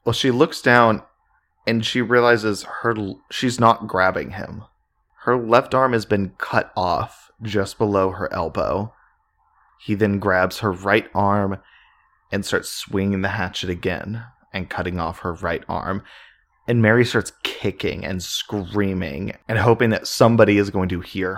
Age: 20-39